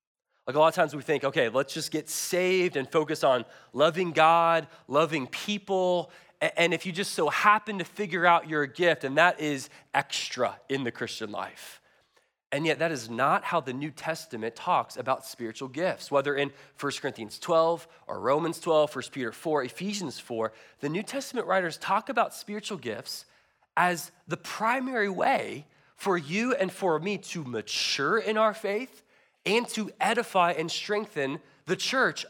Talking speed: 175 wpm